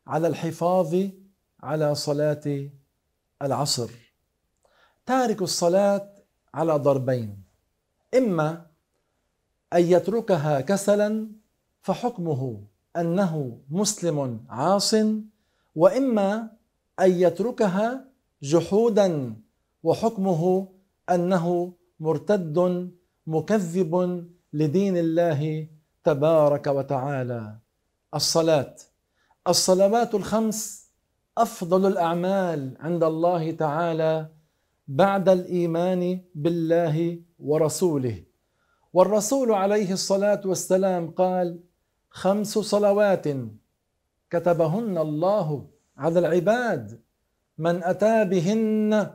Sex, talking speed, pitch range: male, 65 wpm, 155-200 Hz